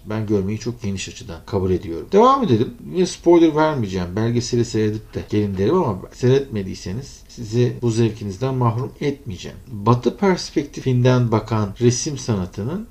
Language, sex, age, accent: Turkish, male, 50-69, native